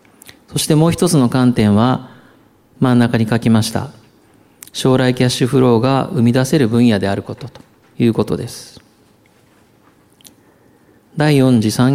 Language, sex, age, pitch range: Japanese, male, 40-59, 115-140 Hz